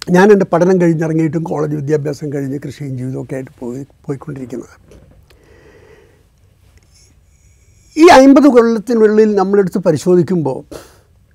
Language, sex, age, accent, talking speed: Malayalam, male, 60-79, native, 95 wpm